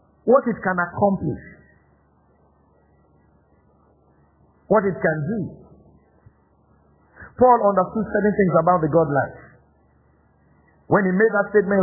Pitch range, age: 155-220 Hz, 50-69